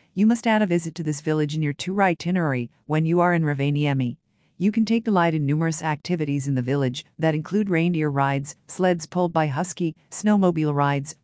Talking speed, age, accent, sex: 200 wpm, 50-69, American, female